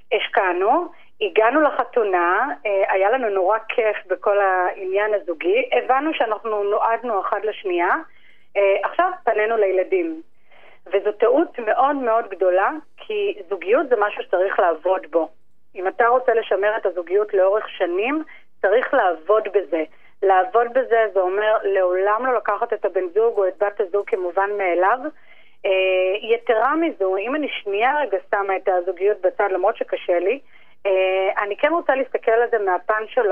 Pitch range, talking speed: 190-285 Hz, 145 wpm